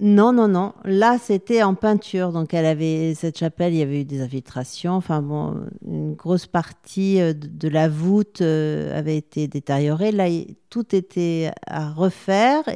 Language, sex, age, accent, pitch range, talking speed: French, female, 50-69, French, 155-190 Hz, 160 wpm